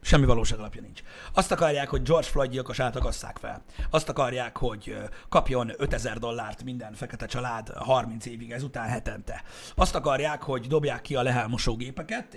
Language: Hungarian